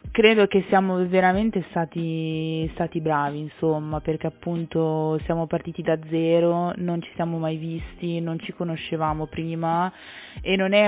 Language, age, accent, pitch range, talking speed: Italian, 20-39, native, 165-185 Hz, 145 wpm